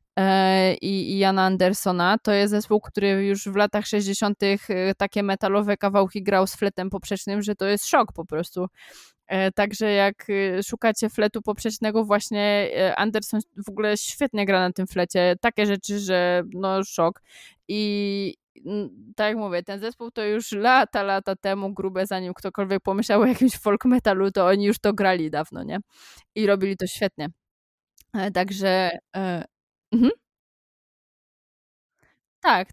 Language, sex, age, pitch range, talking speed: Polish, female, 20-39, 190-225 Hz, 140 wpm